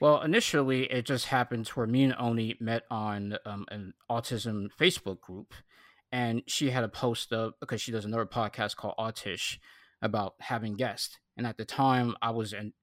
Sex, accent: male, American